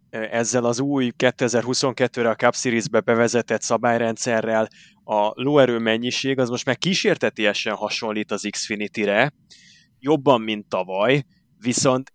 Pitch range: 100-125 Hz